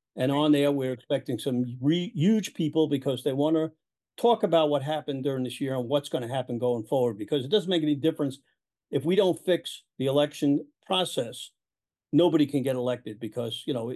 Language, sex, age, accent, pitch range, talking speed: English, male, 50-69, American, 125-160 Hz, 200 wpm